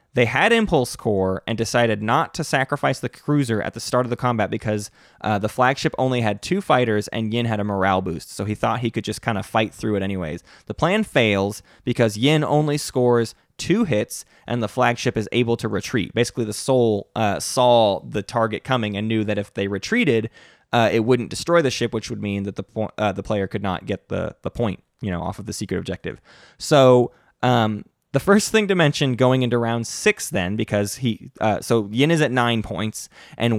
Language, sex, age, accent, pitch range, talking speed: English, male, 20-39, American, 105-140 Hz, 220 wpm